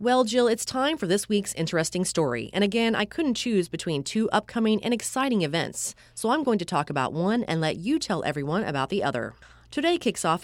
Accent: American